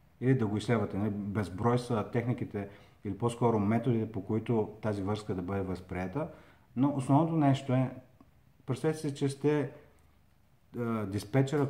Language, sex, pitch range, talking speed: Bulgarian, male, 100-130 Hz, 135 wpm